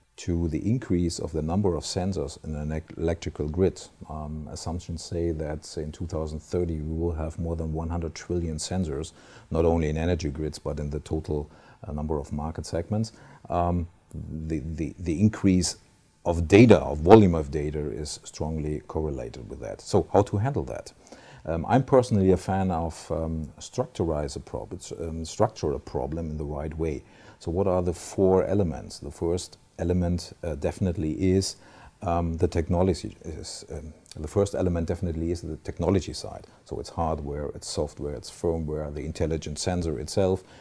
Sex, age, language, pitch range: male, 50-69, English, 80-95 Hz